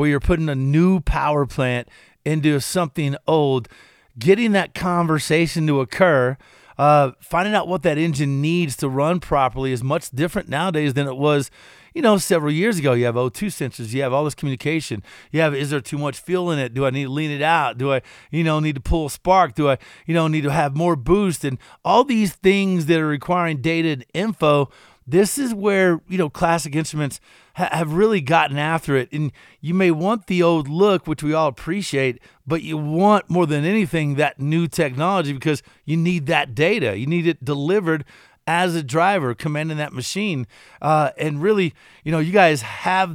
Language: English